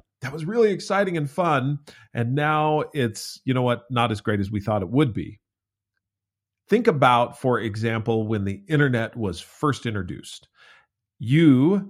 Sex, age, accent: male, 40-59, American